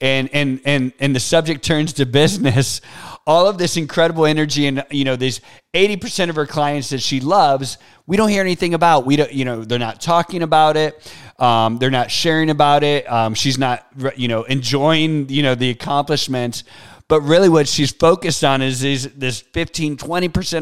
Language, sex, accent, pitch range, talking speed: English, male, American, 130-155 Hz, 190 wpm